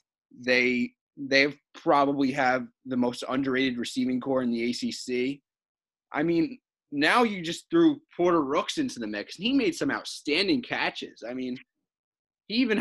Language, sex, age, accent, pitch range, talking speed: English, male, 20-39, American, 130-190 Hz, 155 wpm